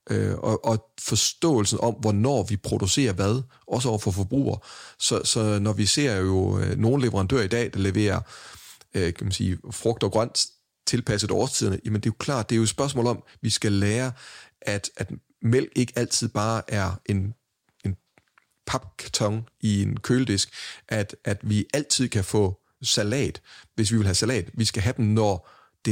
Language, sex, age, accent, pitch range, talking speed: Danish, male, 30-49, native, 105-125 Hz, 185 wpm